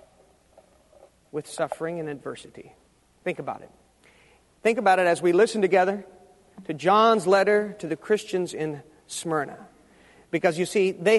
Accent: American